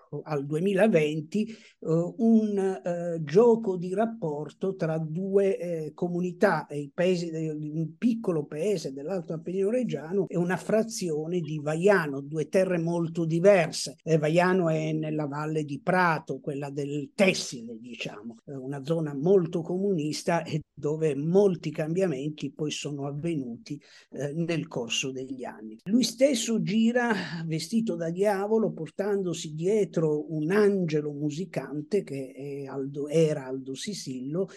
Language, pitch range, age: Italian, 155-200 Hz, 50-69